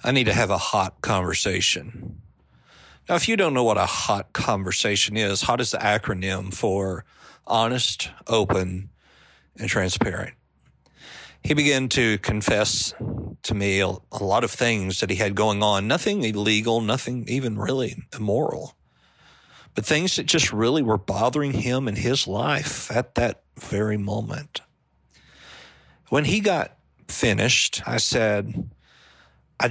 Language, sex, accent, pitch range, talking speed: English, male, American, 100-125 Hz, 140 wpm